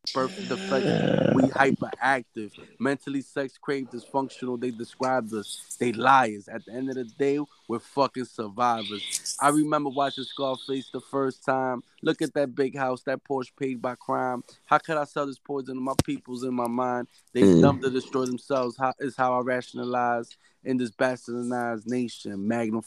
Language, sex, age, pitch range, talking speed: English, male, 20-39, 120-135 Hz, 170 wpm